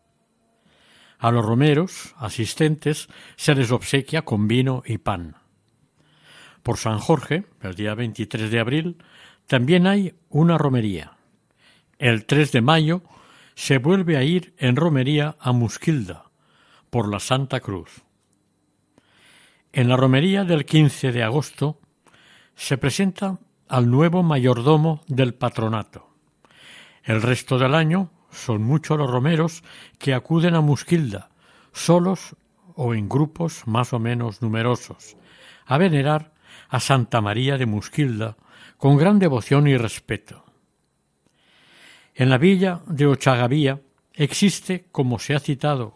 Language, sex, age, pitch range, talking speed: Spanish, male, 60-79, 120-155 Hz, 125 wpm